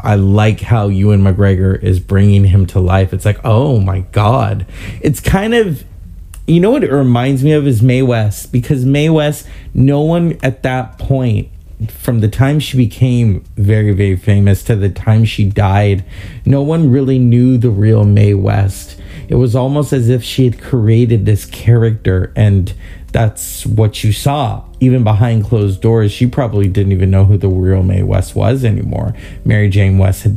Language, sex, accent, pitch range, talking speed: English, male, American, 95-125 Hz, 180 wpm